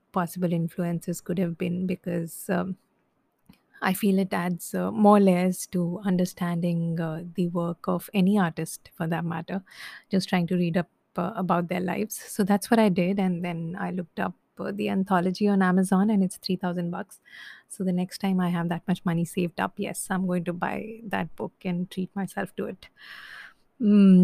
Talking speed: 190 wpm